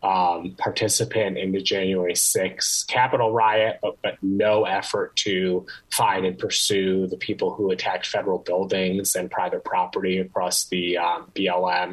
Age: 20-39